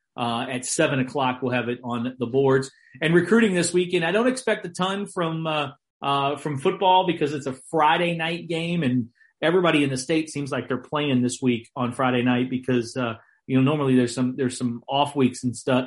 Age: 40-59